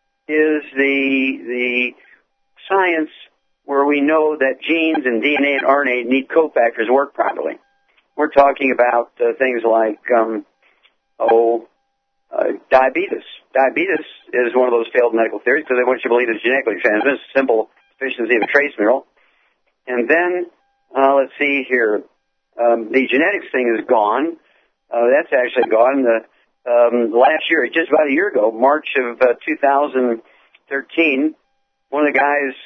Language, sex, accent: English, male, American